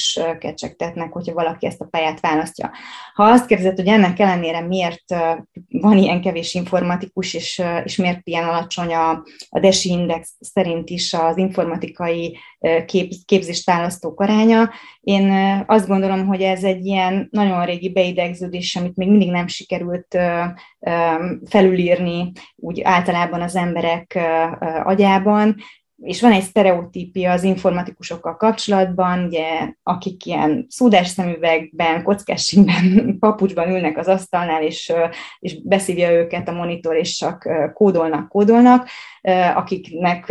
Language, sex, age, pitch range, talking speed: Hungarian, female, 20-39, 170-195 Hz, 120 wpm